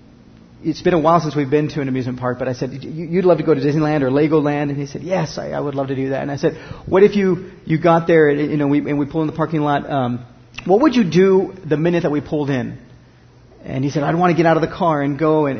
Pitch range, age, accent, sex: 140-160 Hz, 40-59, American, male